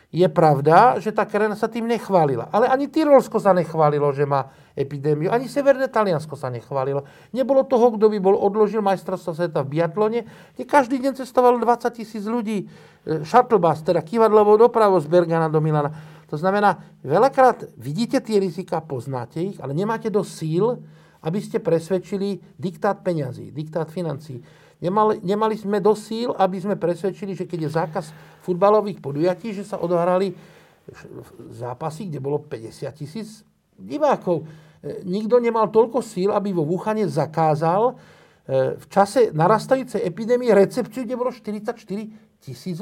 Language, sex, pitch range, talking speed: Slovak, male, 160-220 Hz, 145 wpm